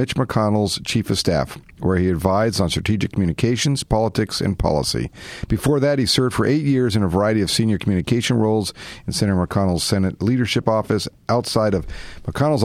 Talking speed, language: 175 wpm, English